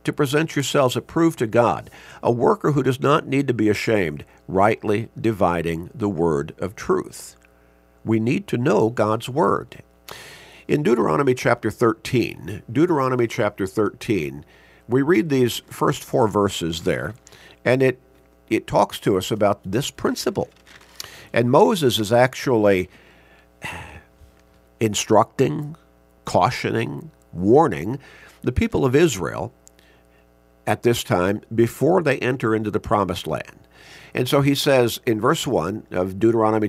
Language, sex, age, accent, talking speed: English, male, 50-69, American, 130 wpm